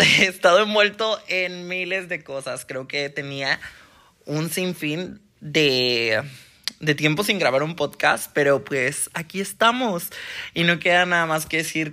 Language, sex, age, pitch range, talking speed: Spanish, male, 20-39, 135-175 Hz, 150 wpm